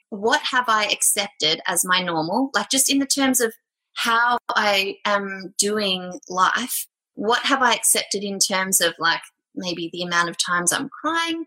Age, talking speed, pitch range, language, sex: 20-39, 175 wpm, 195-255 Hz, English, female